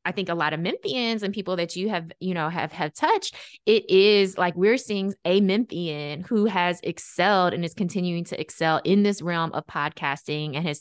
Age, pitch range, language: 20-39, 160-195 Hz, English